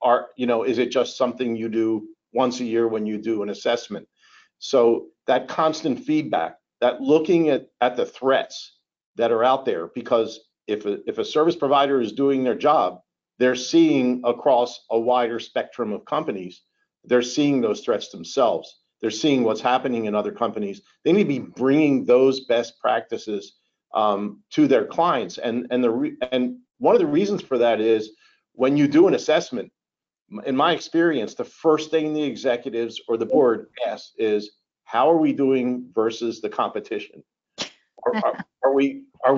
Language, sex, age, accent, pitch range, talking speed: English, male, 50-69, American, 120-165 Hz, 175 wpm